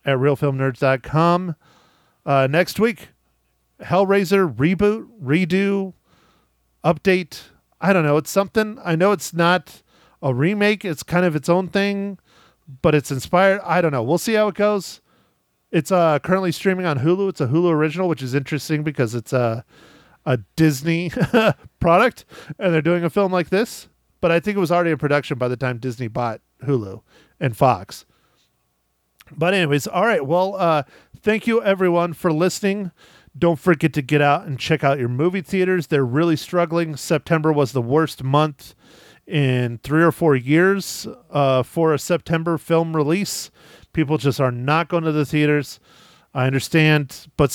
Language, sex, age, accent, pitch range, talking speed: English, male, 40-59, American, 140-175 Hz, 165 wpm